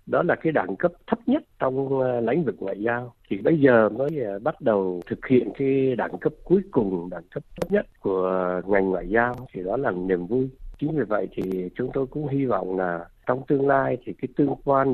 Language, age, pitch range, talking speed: Vietnamese, 60-79, 100-150 Hz, 220 wpm